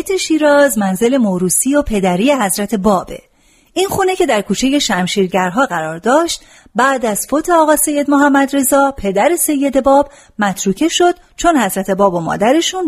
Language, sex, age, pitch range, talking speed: Persian, female, 40-59, 200-290 Hz, 150 wpm